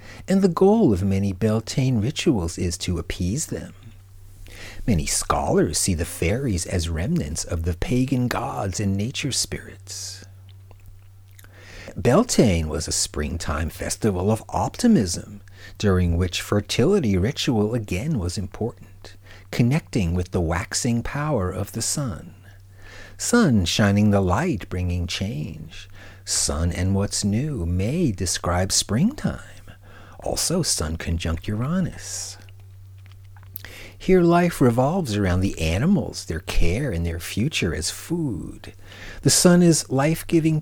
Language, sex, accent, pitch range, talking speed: English, male, American, 90-115 Hz, 120 wpm